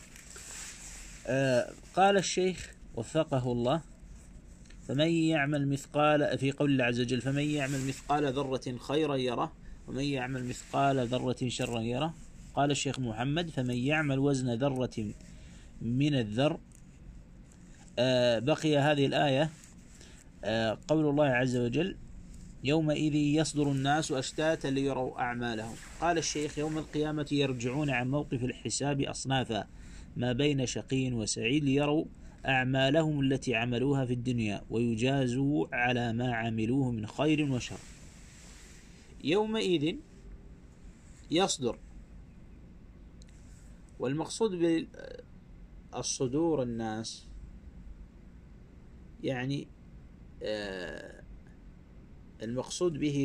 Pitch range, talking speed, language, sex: 110-145 Hz, 90 wpm, Arabic, male